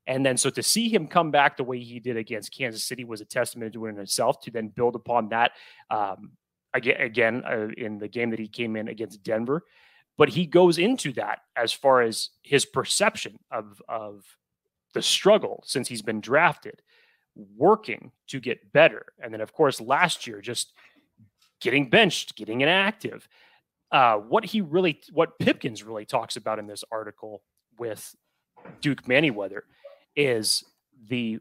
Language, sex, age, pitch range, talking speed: English, male, 30-49, 115-145 Hz, 170 wpm